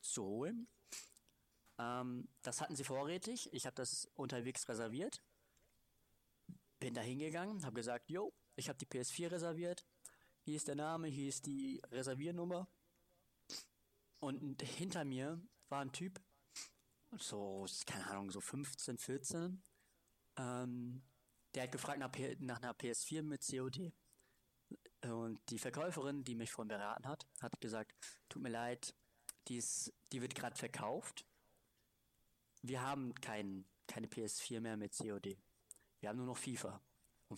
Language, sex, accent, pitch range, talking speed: German, male, German, 120-150 Hz, 140 wpm